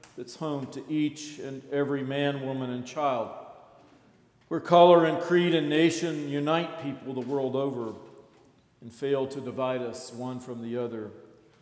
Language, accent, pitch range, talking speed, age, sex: English, American, 125-150 Hz, 155 wpm, 50-69, male